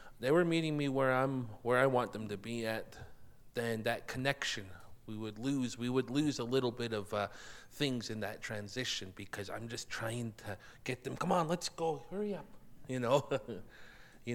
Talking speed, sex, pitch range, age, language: 195 wpm, male, 100-130 Hz, 30-49, English